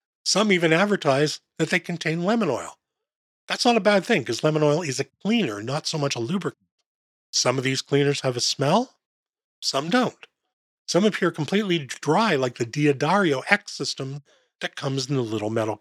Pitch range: 135-200 Hz